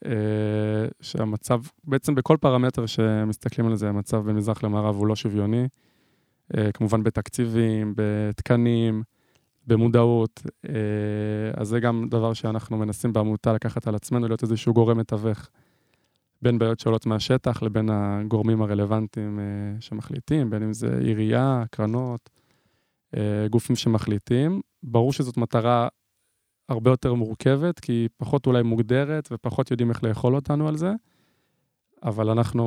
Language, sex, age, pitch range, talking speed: Hebrew, male, 20-39, 110-125 Hz, 130 wpm